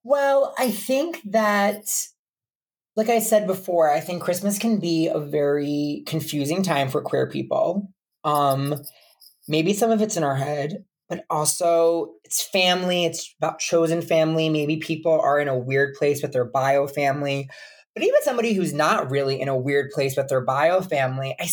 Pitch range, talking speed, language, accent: 145-180 Hz, 175 wpm, English, American